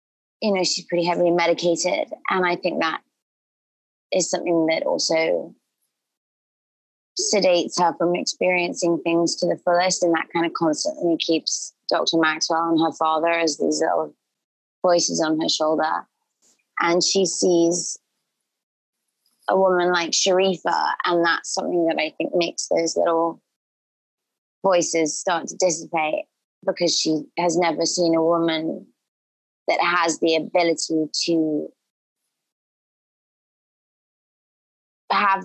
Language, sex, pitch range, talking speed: English, female, 160-185 Hz, 125 wpm